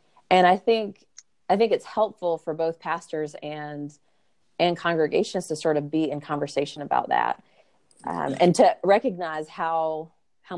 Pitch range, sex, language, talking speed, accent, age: 150-180 Hz, female, English, 155 wpm, American, 30-49